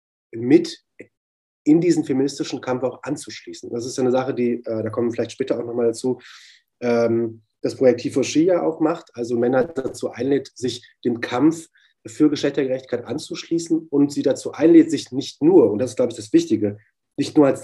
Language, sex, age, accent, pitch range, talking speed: German, male, 30-49, German, 115-150 Hz, 185 wpm